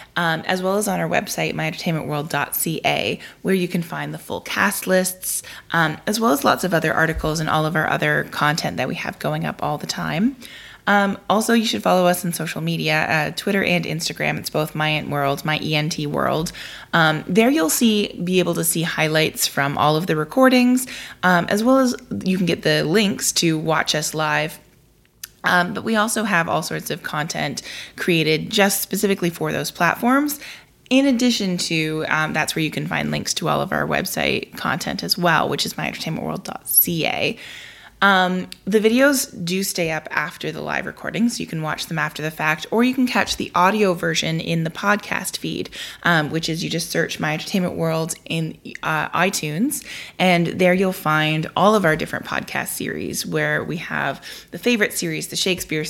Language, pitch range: English, 155-195 Hz